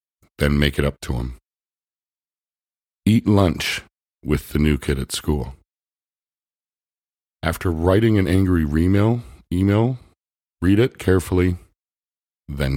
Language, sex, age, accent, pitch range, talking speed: English, male, 50-69, American, 70-90 Hz, 110 wpm